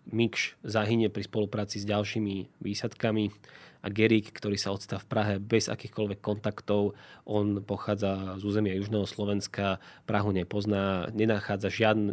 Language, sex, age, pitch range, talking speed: Slovak, male, 20-39, 100-110 Hz, 135 wpm